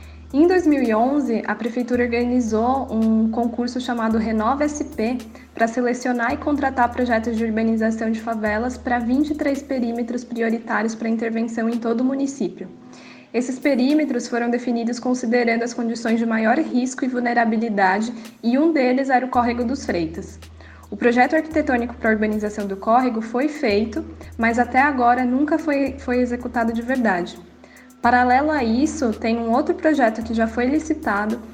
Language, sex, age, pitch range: Portuguese, female, 10-29, 230-260 Hz